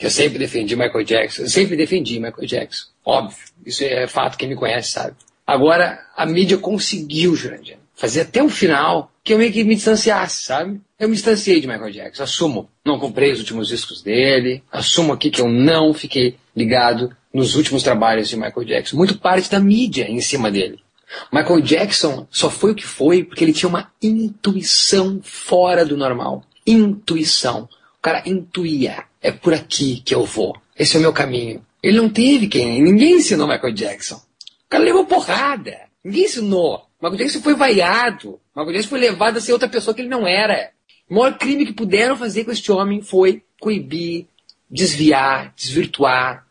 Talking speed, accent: 180 wpm, Brazilian